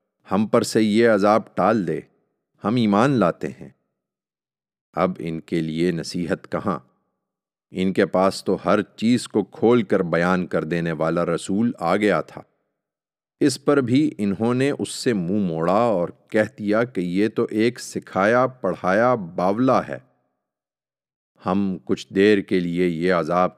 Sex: male